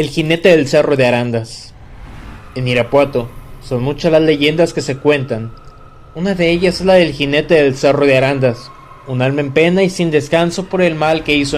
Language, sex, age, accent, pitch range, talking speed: Spanish, male, 30-49, Mexican, 130-160 Hz, 195 wpm